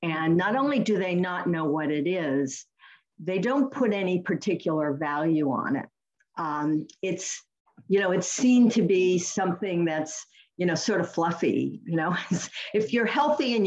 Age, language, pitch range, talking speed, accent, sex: 50-69, English, 160-215 Hz, 170 wpm, American, female